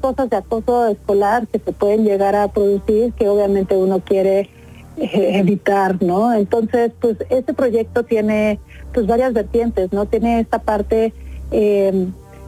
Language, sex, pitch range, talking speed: Spanish, female, 195-230 Hz, 145 wpm